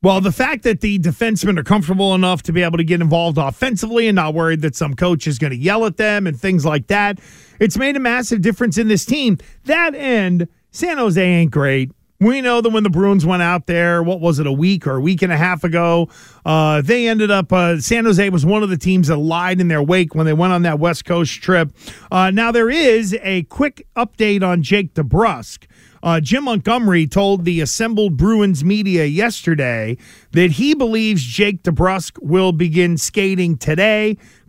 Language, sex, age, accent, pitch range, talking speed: English, male, 40-59, American, 170-215 Hz, 210 wpm